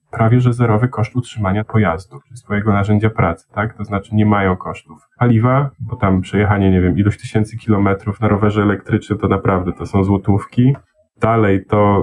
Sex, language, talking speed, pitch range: male, Polish, 170 wpm, 105-125 Hz